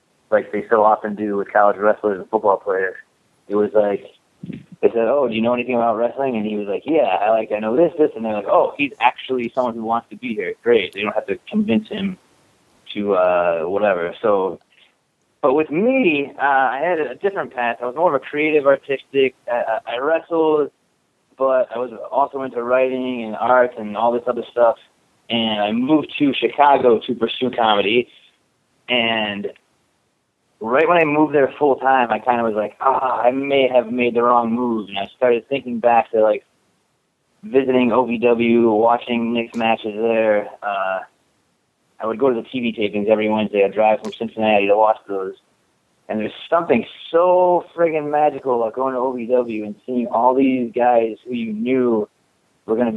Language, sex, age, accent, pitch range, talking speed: English, male, 30-49, American, 110-135 Hz, 190 wpm